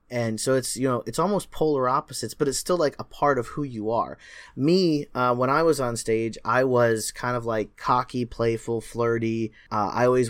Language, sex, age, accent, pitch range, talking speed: English, male, 20-39, American, 110-140 Hz, 215 wpm